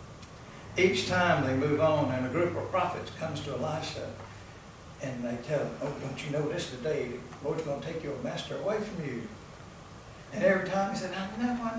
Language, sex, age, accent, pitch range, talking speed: English, male, 60-79, American, 125-180 Hz, 210 wpm